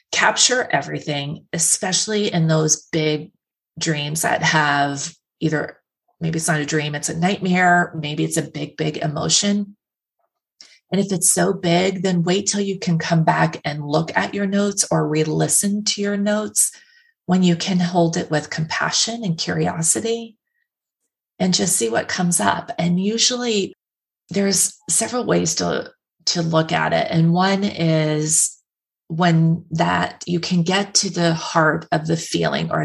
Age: 30-49